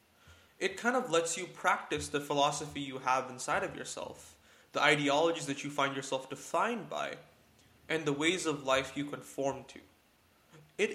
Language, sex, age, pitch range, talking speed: English, male, 20-39, 135-175 Hz, 165 wpm